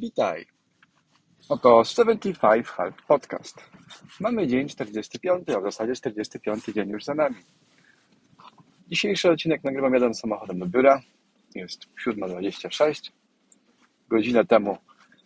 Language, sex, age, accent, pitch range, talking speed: Polish, male, 40-59, native, 115-170 Hz, 105 wpm